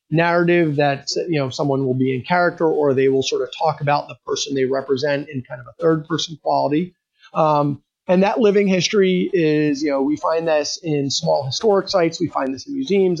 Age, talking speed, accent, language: 30-49, 215 wpm, American, English